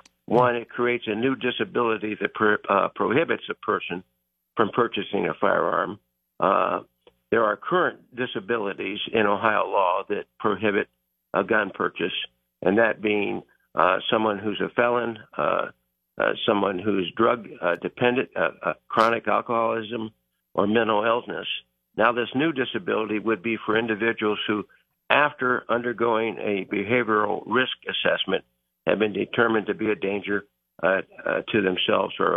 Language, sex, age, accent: English, male, 60-79, American